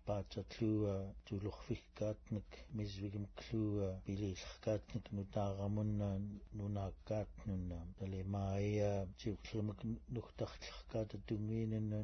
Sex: male